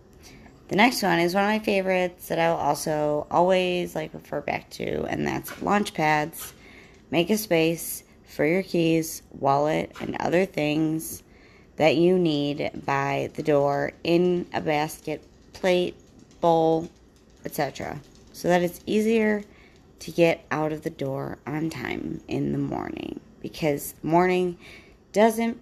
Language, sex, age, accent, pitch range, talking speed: English, female, 30-49, American, 150-190 Hz, 145 wpm